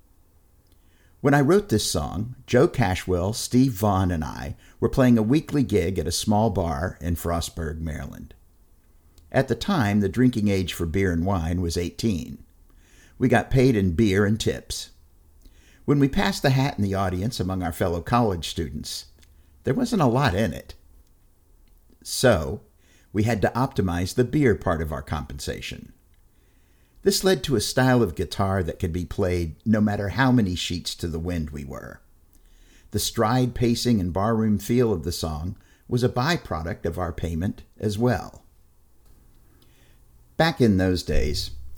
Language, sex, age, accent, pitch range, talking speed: English, male, 50-69, American, 80-110 Hz, 165 wpm